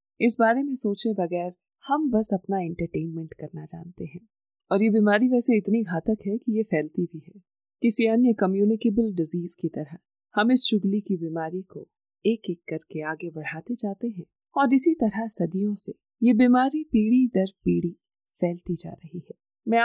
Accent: native